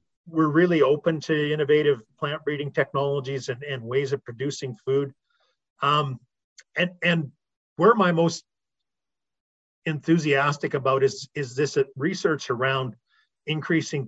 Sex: male